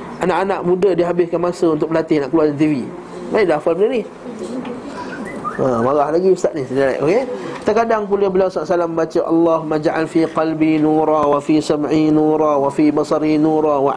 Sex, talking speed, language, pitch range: male, 180 wpm, Malay, 150-195 Hz